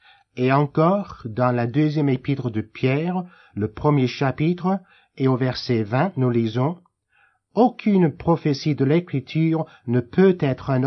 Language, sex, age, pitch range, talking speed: French, male, 50-69, 115-155 Hz, 140 wpm